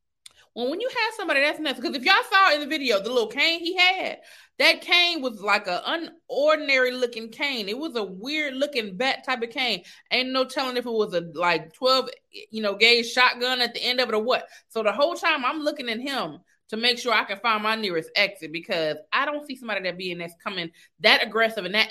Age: 20-39